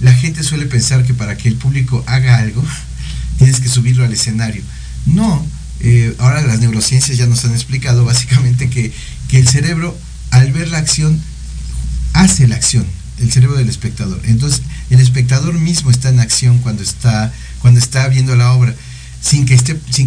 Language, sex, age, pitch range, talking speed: Spanish, male, 50-69, 115-135 Hz, 165 wpm